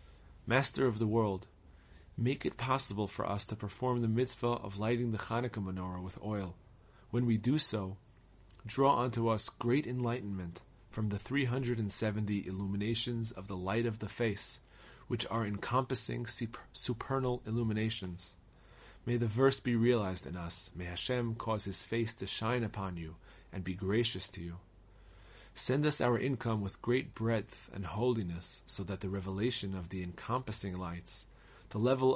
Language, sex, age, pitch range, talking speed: English, male, 30-49, 95-120 Hz, 155 wpm